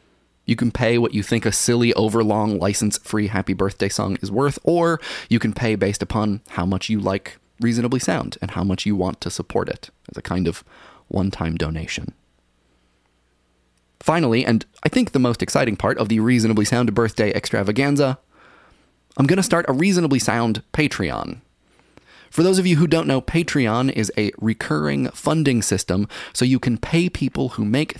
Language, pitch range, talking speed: English, 95-125 Hz, 180 wpm